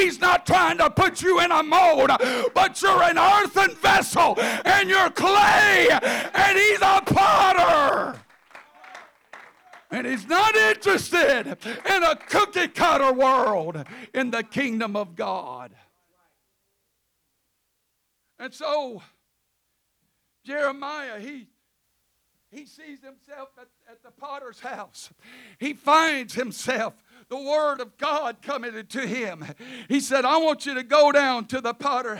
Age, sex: 60-79, male